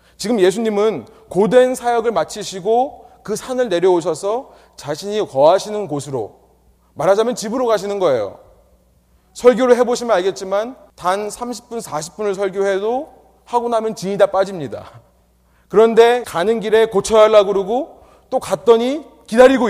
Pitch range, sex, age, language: 175-245 Hz, male, 30-49, Korean